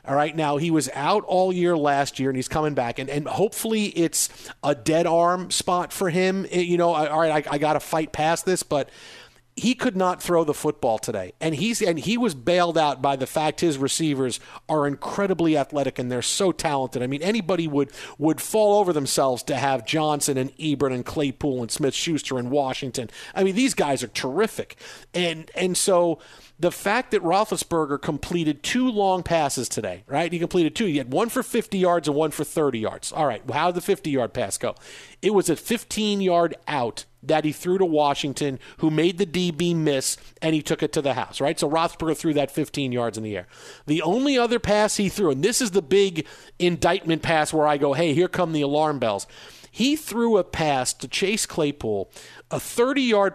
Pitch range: 145-185 Hz